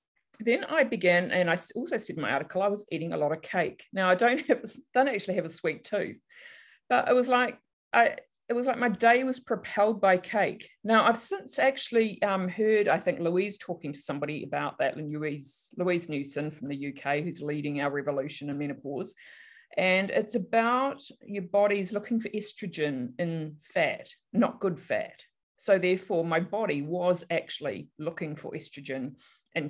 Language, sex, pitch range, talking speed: English, female, 150-215 Hz, 185 wpm